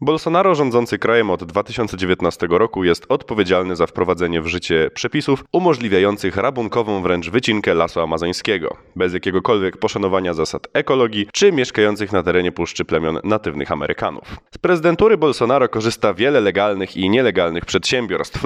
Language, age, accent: Polish, 20-39, native